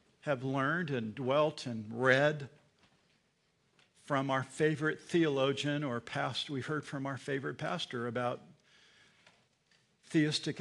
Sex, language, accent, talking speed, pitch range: male, English, American, 105 wpm, 125-150 Hz